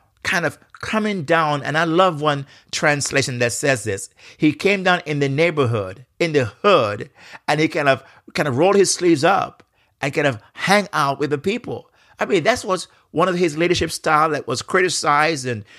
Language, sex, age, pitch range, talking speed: English, male, 50-69, 135-175 Hz, 200 wpm